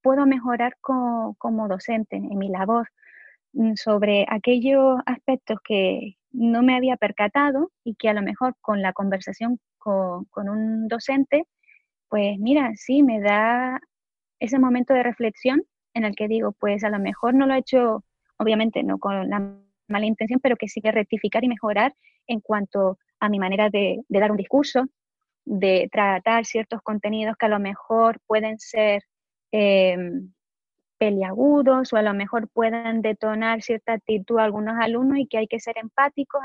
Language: Spanish